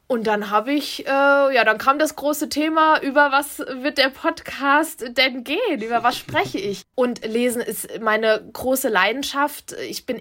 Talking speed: 175 wpm